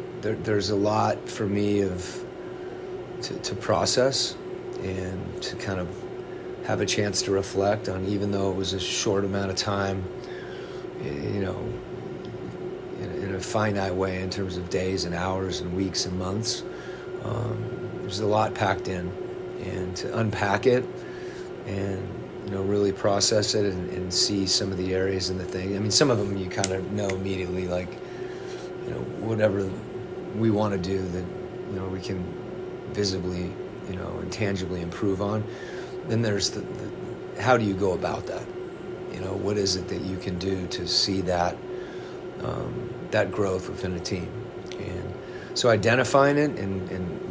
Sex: male